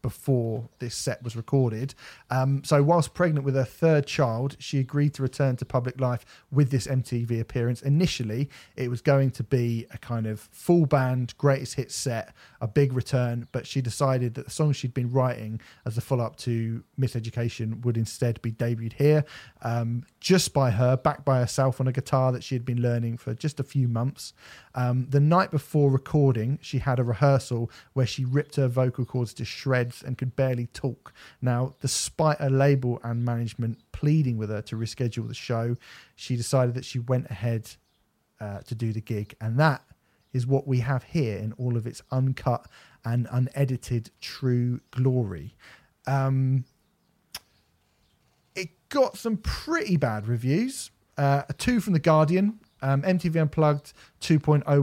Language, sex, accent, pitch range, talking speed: English, male, British, 120-140 Hz, 175 wpm